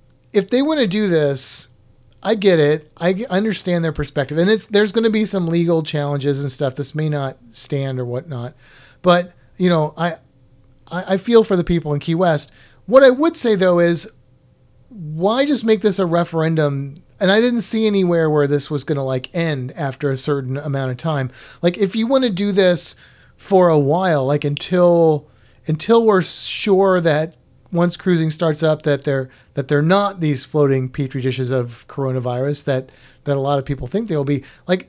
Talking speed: 195 wpm